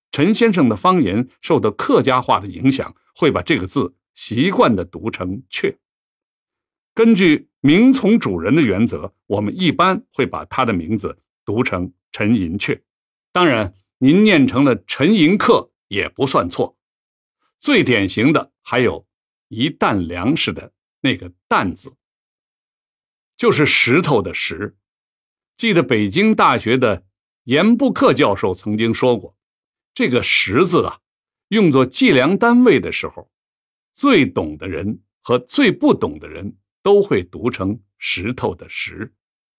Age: 60-79